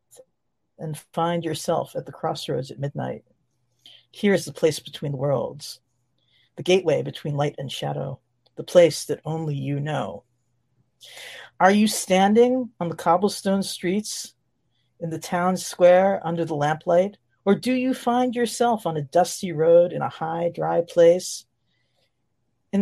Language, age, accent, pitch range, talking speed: English, 50-69, American, 140-195 Hz, 140 wpm